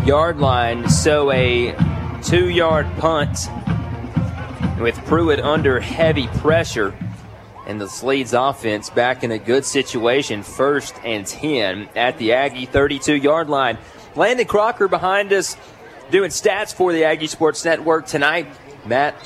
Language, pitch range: English, 125-160 Hz